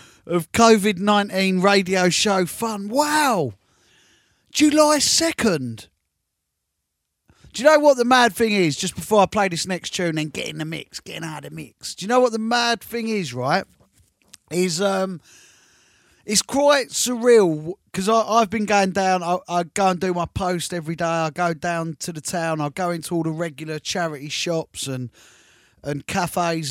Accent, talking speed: British, 175 wpm